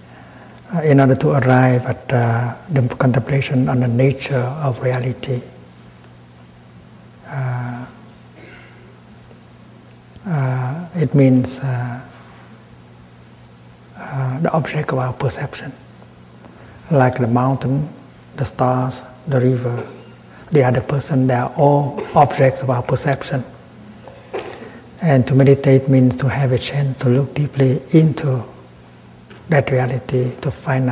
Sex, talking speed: male, 100 wpm